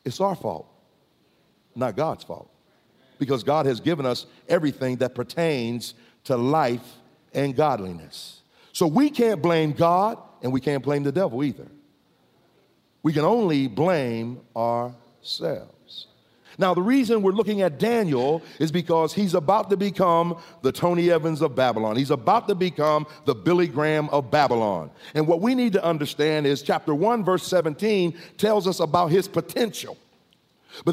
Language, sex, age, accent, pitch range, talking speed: English, male, 50-69, American, 150-195 Hz, 155 wpm